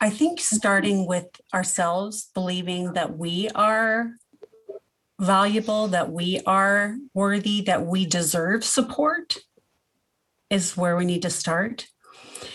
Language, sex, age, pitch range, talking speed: English, female, 40-59, 180-230 Hz, 115 wpm